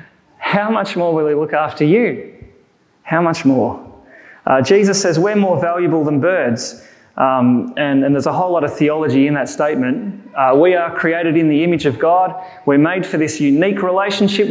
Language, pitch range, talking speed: English, 155-205 Hz, 190 wpm